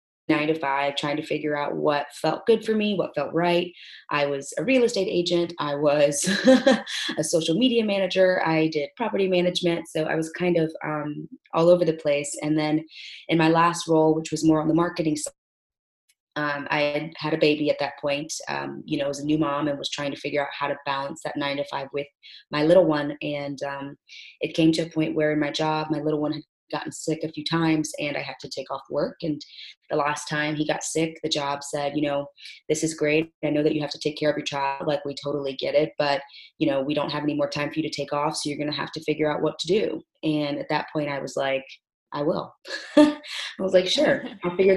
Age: 20-39